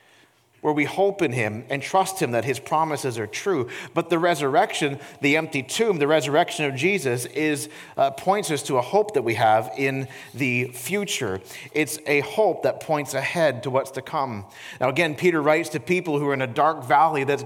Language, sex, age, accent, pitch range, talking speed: English, male, 40-59, American, 150-205 Hz, 205 wpm